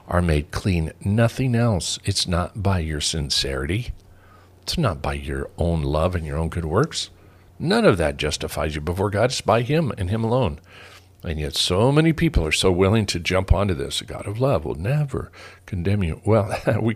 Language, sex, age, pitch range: English, male, 50-69, 85-100 Hz